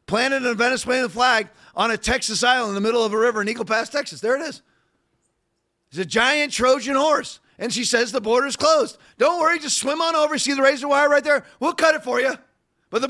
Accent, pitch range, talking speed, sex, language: American, 210-275 Hz, 235 wpm, male, English